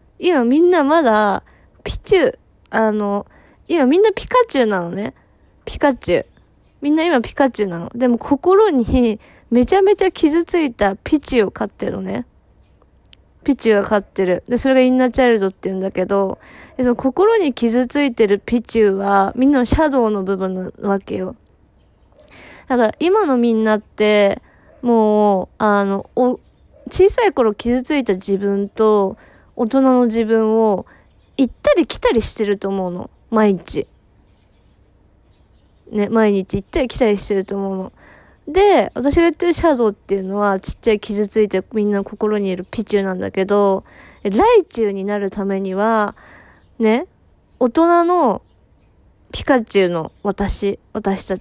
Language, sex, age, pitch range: Japanese, female, 20-39, 195-270 Hz